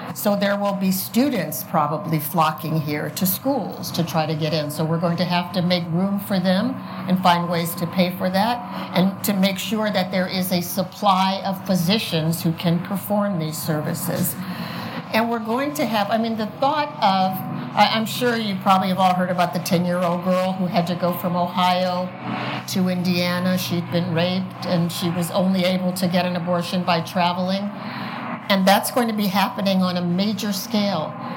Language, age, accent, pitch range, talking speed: English, 50-69, American, 175-200 Hz, 195 wpm